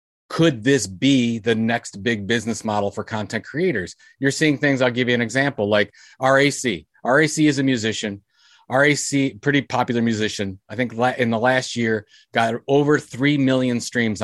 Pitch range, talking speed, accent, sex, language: 120-160 Hz, 170 wpm, American, male, English